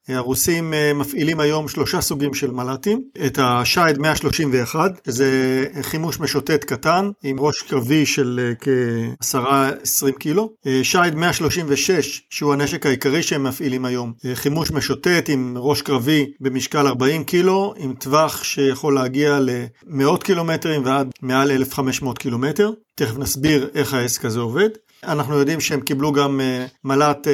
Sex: male